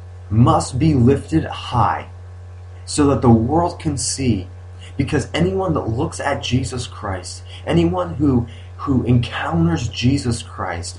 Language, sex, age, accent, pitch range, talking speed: English, male, 30-49, American, 90-125 Hz, 125 wpm